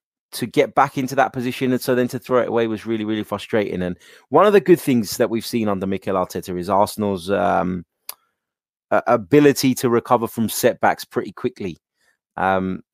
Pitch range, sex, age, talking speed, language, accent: 100-125 Hz, male, 20-39, 185 wpm, English, British